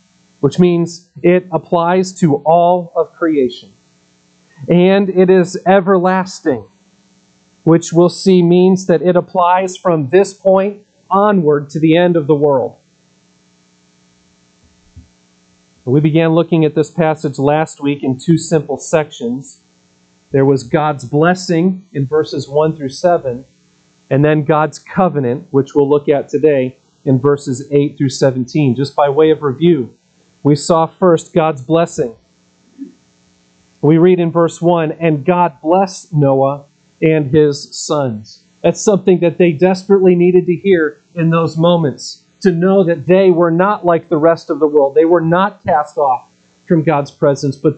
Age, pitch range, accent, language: 40-59, 140-175 Hz, American, English